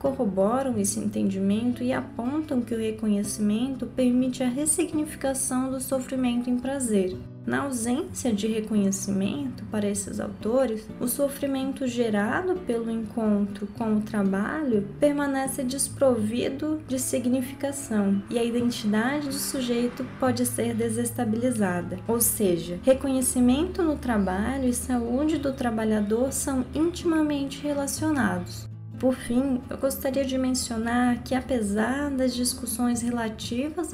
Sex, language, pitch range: female, Portuguese, 210-270 Hz